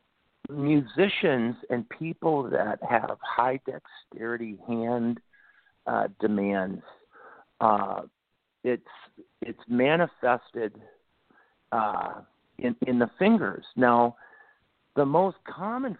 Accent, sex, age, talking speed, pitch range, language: American, male, 50-69, 85 wpm, 110-160 Hz, English